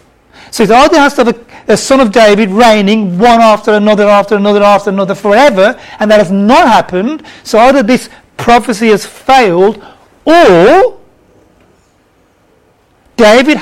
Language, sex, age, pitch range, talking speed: English, male, 40-59, 185-240 Hz, 145 wpm